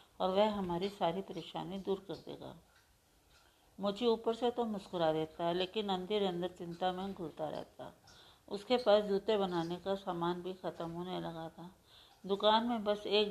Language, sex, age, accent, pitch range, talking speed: Hindi, female, 50-69, native, 170-205 Hz, 165 wpm